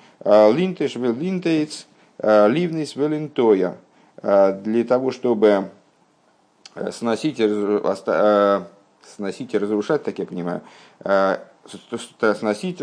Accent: native